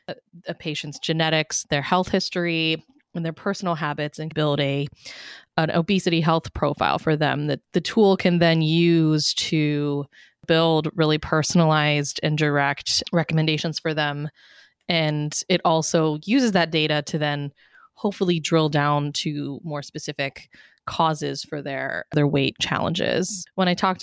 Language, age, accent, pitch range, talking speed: English, 20-39, American, 150-175 Hz, 140 wpm